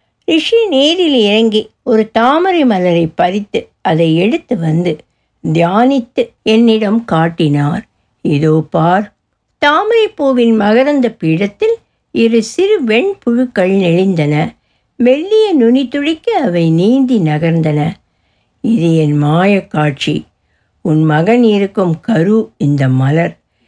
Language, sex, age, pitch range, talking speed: Tamil, female, 60-79, 165-245 Hz, 95 wpm